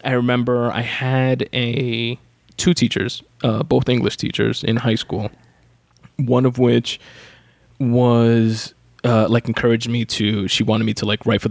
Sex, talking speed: male, 155 wpm